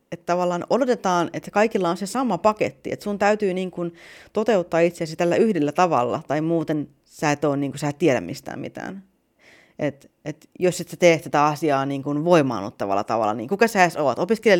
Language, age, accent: Finnish, 30-49, native